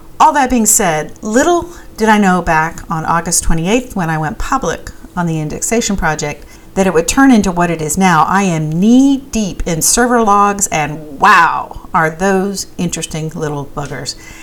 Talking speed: 180 wpm